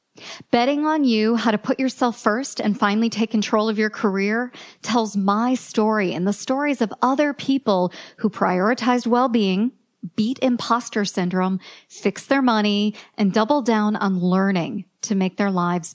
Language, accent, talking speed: English, American, 160 wpm